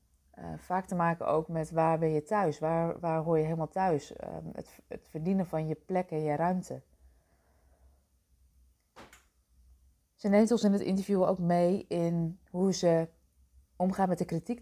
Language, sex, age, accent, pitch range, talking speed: Dutch, female, 20-39, Dutch, 145-185 Hz, 170 wpm